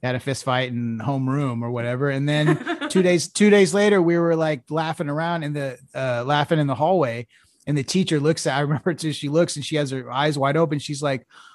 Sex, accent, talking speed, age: male, American, 235 wpm, 30-49